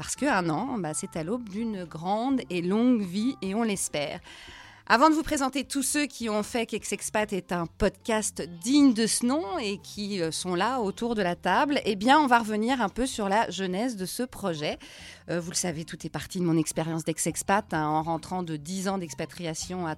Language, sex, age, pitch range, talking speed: French, female, 30-49, 185-240 Hz, 215 wpm